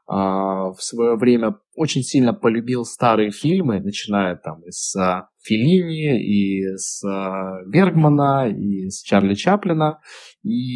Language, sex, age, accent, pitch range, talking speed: Russian, male, 20-39, native, 105-145 Hz, 100 wpm